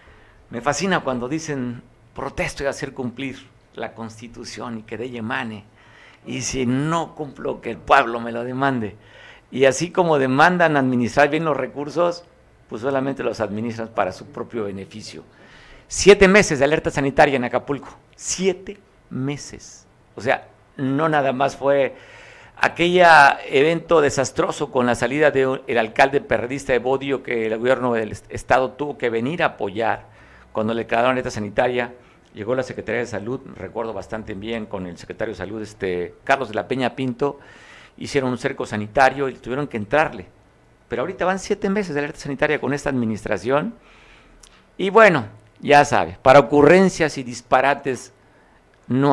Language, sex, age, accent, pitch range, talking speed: Spanish, male, 50-69, Mexican, 115-145 Hz, 160 wpm